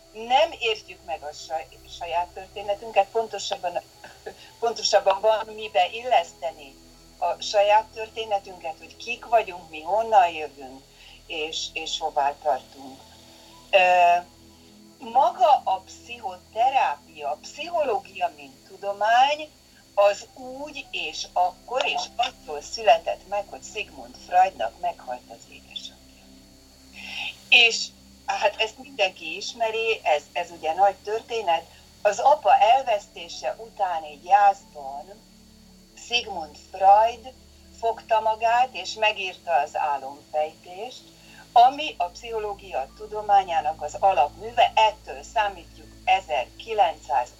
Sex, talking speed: female, 100 wpm